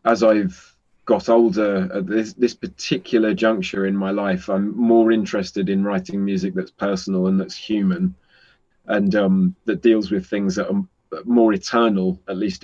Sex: male